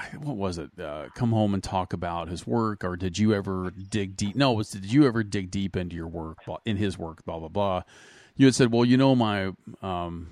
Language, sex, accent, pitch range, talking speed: English, male, American, 95-120 Hz, 245 wpm